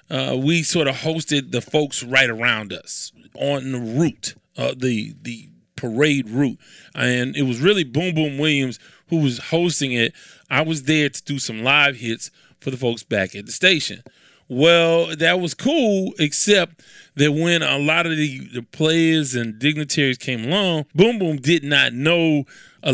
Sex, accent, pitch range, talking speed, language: male, American, 130-170 Hz, 175 wpm, English